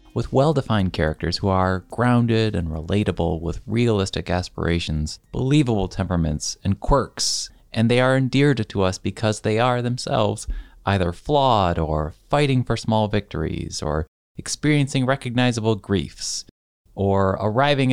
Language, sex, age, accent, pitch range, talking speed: English, male, 30-49, American, 90-125 Hz, 125 wpm